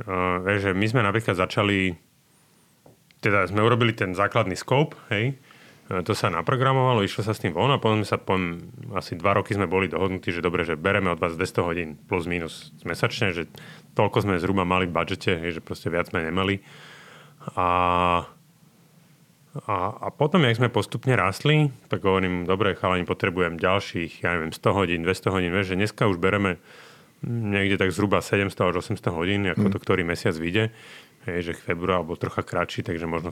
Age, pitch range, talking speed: 30-49, 90-115 Hz, 180 wpm